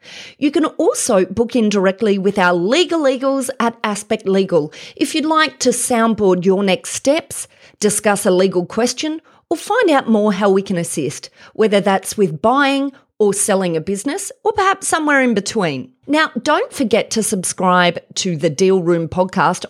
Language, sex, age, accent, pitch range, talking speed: English, female, 30-49, Australian, 180-250 Hz, 170 wpm